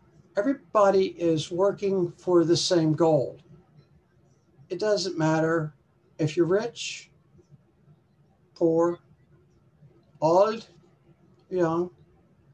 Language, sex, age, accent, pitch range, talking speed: English, male, 60-79, American, 155-175 Hz, 75 wpm